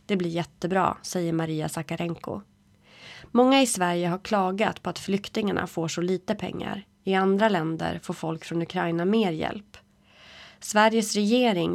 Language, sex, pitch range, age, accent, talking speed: Swedish, female, 170-215 Hz, 30-49, native, 150 wpm